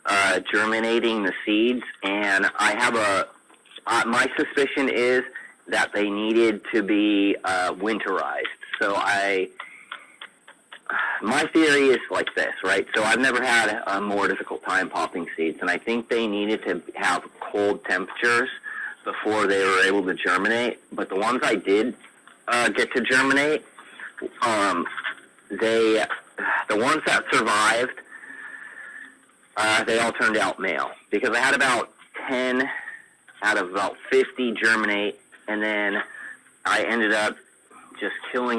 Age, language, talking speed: 30-49, English, 140 wpm